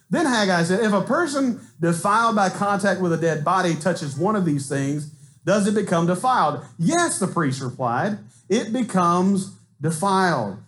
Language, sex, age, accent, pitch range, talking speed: English, male, 40-59, American, 145-205 Hz, 165 wpm